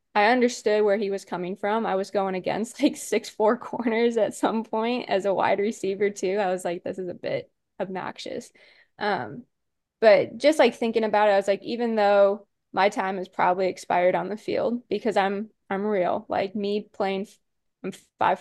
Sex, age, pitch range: female, 20-39, 190-220 Hz